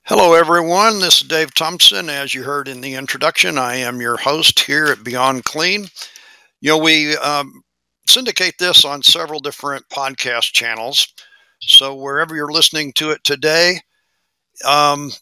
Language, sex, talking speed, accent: English, male, 155 wpm, American